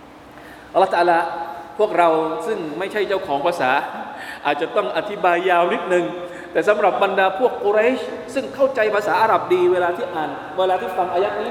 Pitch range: 195-285 Hz